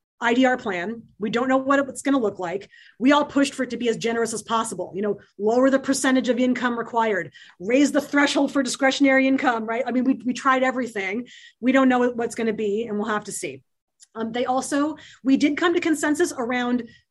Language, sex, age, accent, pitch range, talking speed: English, female, 30-49, American, 210-255 Hz, 225 wpm